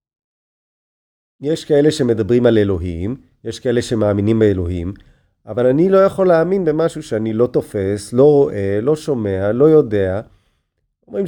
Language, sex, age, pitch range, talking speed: Hebrew, male, 40-59, 105-150 Hz, 135 wpm